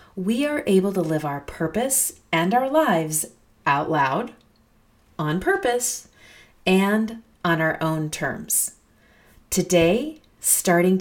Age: 40-59